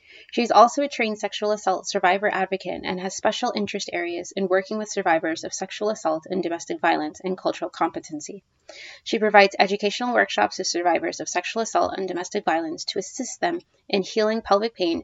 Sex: female